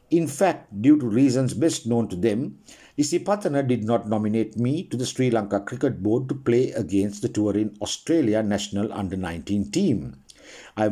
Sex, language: male, English